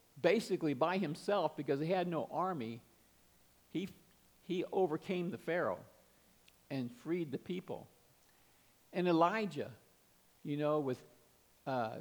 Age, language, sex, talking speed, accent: 50-69, English, male, 115 wpm, American